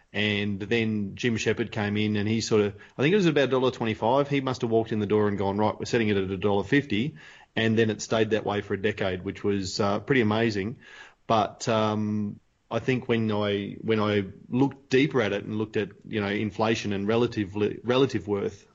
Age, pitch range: 30-49, 105-115 Hz